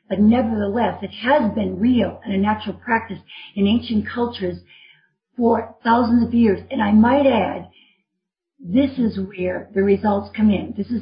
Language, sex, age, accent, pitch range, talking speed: English, female, 50-69, American, 200-245 Hz, 165 wpm